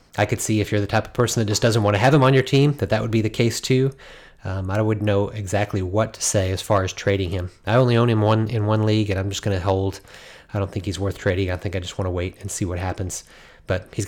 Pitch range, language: 100-115 Hz, English